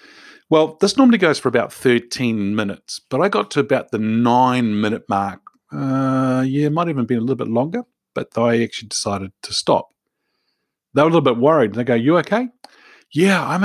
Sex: male